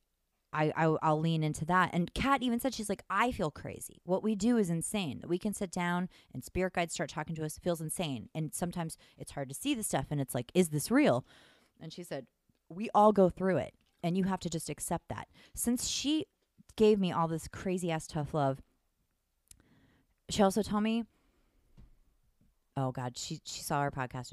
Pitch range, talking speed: 130-175 Hz, 205 wpm